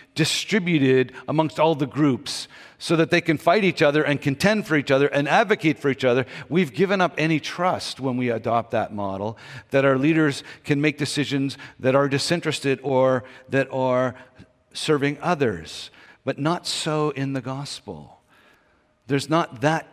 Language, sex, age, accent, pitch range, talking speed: English, male, 50-69, American, 115-150 Hz, 165 wpm